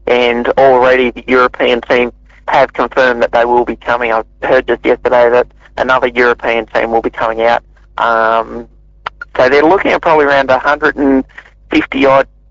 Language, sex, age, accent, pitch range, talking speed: English, male, 30-49, Australian, 120-130 Hz, 155 wpm